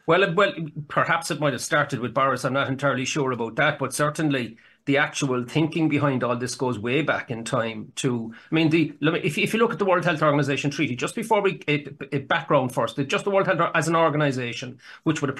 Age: 40-59